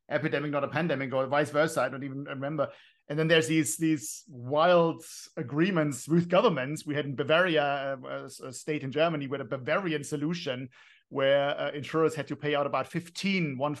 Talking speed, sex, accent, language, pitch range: 185 wpm, male, German, English, 140-165 Hz